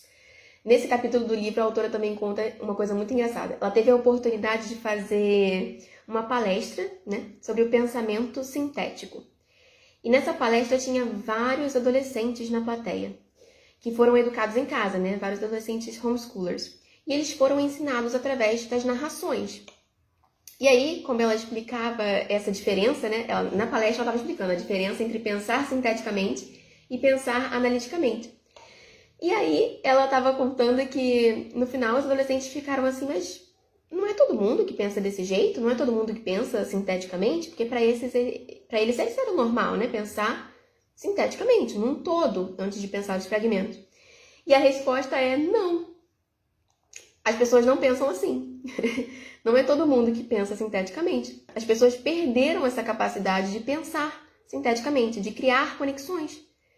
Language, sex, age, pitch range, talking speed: Portuguese, female, 20-39, 220-275 Hz, 150 wpm